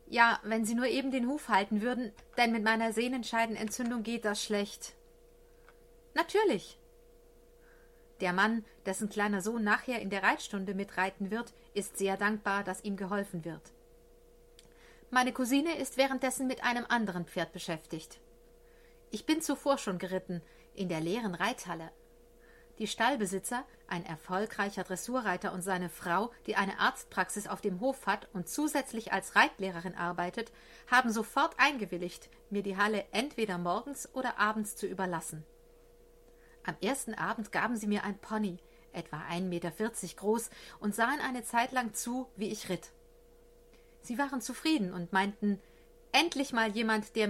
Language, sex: German, female